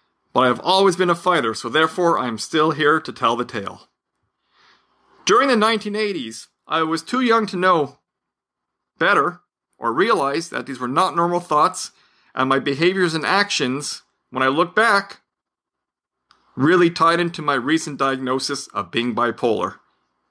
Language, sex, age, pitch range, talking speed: English, male, 50-69, 130-200 Hz, 155 wpm